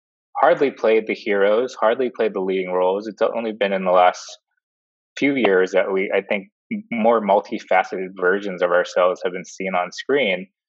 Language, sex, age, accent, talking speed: English, male, 20-39, American, 175 wpm